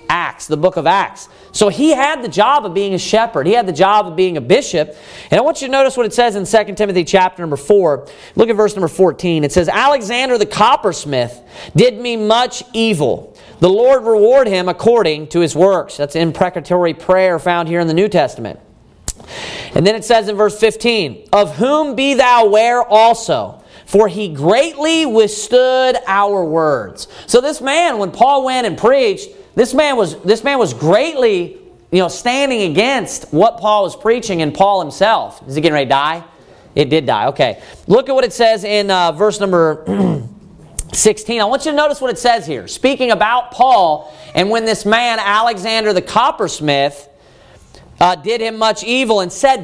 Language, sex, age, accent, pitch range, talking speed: English, male, 40-59, American, 180-250 Hz, 185 wpm